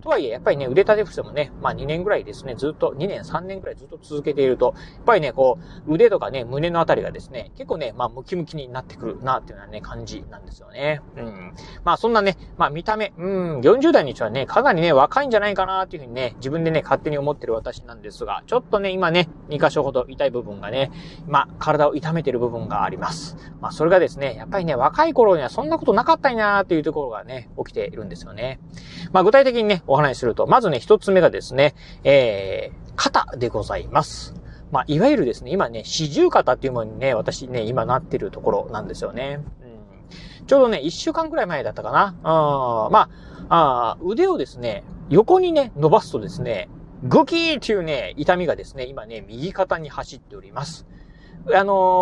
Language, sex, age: Japanese, male, 30-49